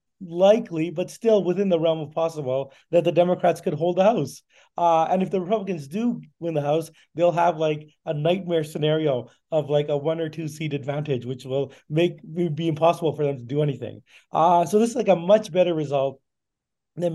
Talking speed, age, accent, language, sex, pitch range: 205 wpm, 30-49, American, English, male, 145-175 Hz